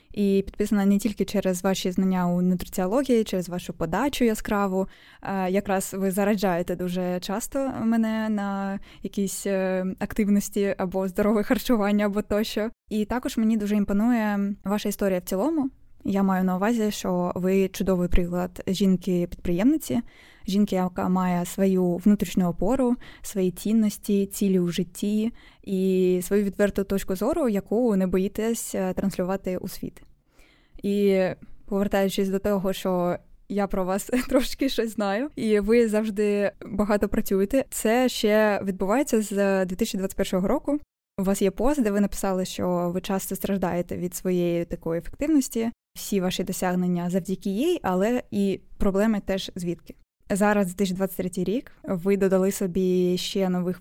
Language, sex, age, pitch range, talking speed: Ukrainian, female, 20-39, 185-215 Hz, 135 wpm